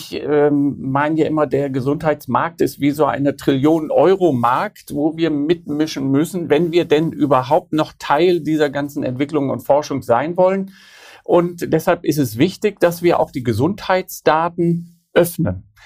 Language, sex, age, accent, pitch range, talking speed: German, male, 50-69, German, 150-180 Hz, 150 wpm